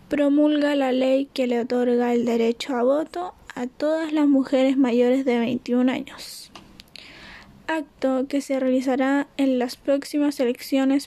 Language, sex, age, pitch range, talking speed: Spanish, female, 10-29, 245-295 Hz, 140 wpm